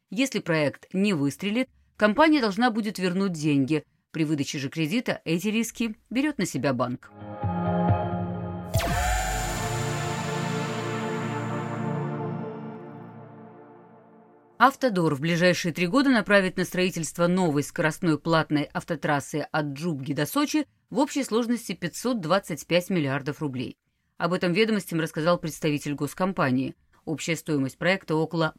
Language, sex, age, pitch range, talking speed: Russian, female, 30-49, 150-205 Hz, 105 wpm